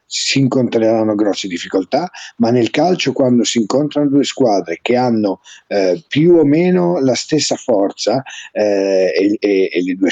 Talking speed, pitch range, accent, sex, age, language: 160 wpm, 110-160 Hz, native, male, 50-69, Italian